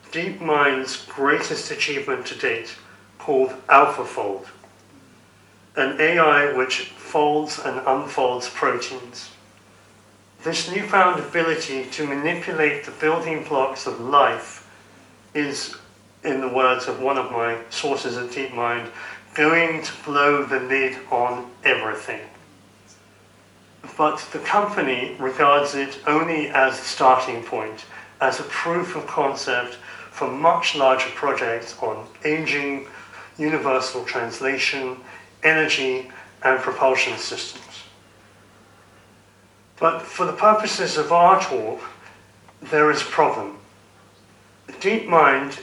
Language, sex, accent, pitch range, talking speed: English, male, British, 120-155 Hz, 110 wpm